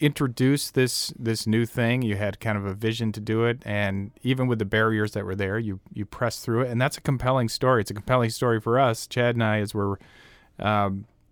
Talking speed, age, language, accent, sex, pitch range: 235 wpm, 40-59, English, American, male, 105-125 Hz